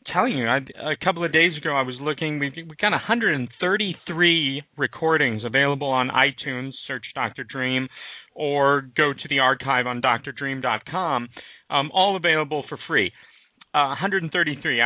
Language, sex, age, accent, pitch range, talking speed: English, male, 40-59, American, 135-170 Hz, 150 wpm